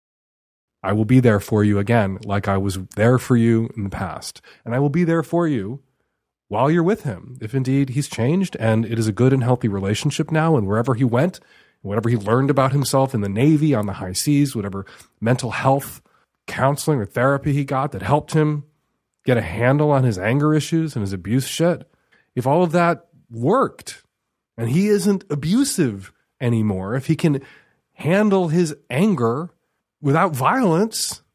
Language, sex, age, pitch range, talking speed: English, male, 30-49, 105-160 Hz, 185 wpm